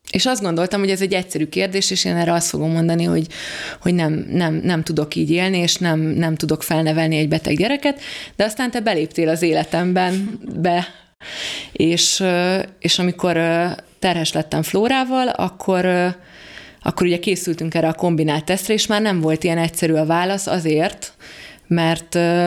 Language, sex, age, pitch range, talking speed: Hungarian, female, 20-39, 160-190 Hz, 160 wpm